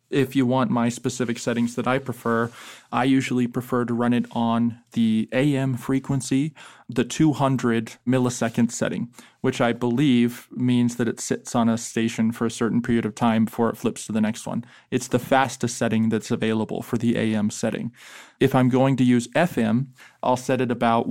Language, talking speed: English, 190 wpm